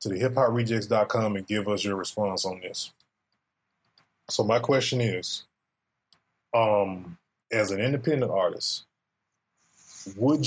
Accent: American